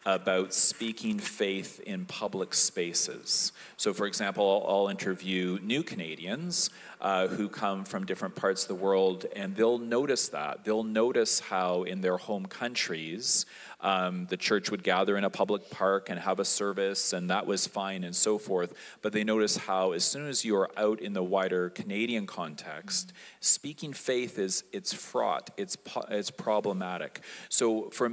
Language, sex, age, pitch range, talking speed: English, male, 40-59, 95-120 Hz, 165 wpm